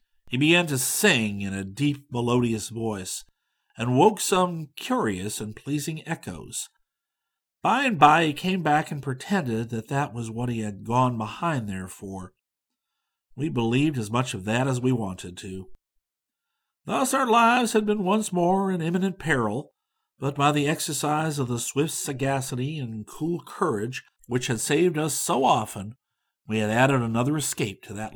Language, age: English, 50-69